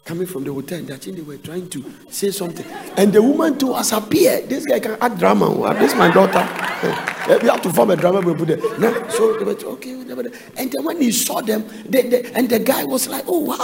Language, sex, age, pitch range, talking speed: English, male, 50-69, 175-275 Hz, 220 wpm